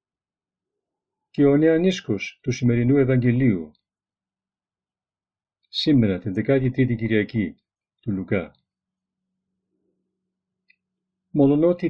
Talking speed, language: 70 wpm, Greek